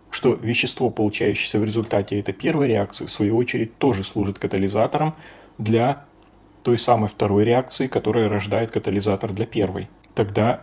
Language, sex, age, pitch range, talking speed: Russian, male, 30-49, 105-120 Hz, 140 wpm